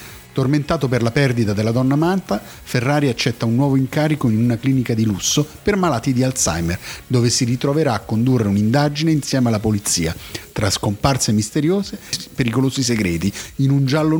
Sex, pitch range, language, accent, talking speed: male, 110-155 Hz, Italian, native, 165 wpm